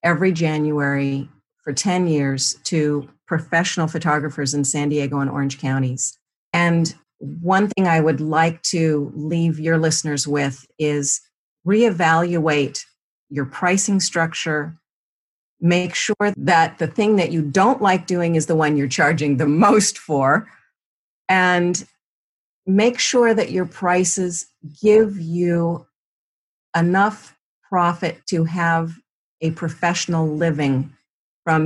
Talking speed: 120 wpm